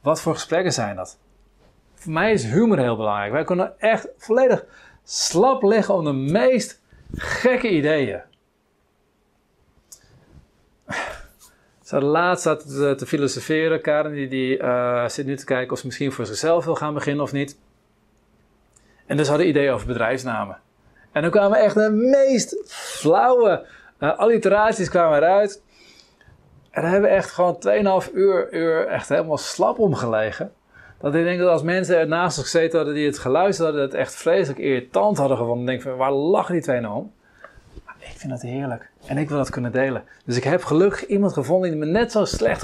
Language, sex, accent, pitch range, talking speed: Dutch, male, Dutch, 130-190 Hz, 180 wpm